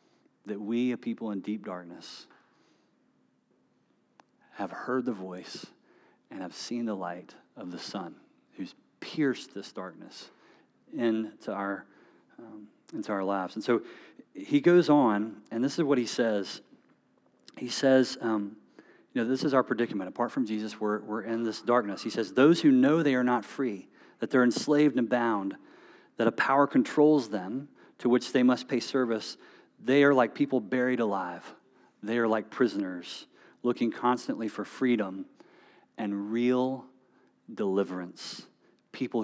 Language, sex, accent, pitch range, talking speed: English, male, American, 105-130 Hz, 150 wpm